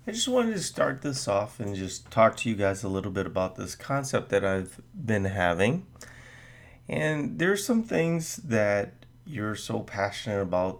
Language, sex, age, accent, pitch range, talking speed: English, male, 30-49, American, 100-125 Hz, 185 wpm